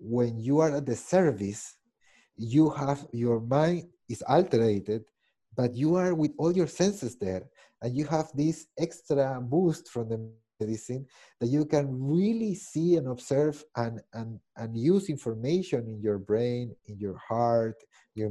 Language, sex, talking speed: English, male, 155 wpm